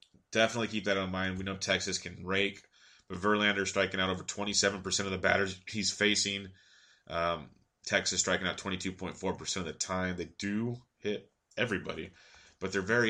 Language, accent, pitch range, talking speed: English, American, 90-100 Hz, 165 wpm